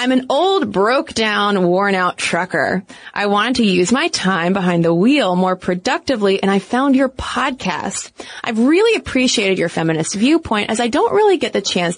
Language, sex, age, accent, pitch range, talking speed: English, female, 20-39, American, 185-260 Hz, 175 wpm